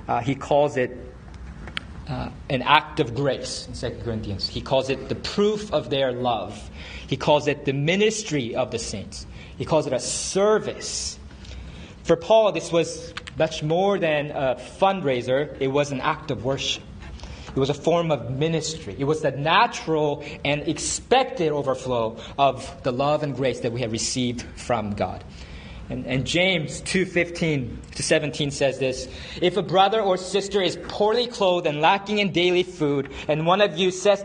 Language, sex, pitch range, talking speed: English, male, 110-170 Hz, 170 wpm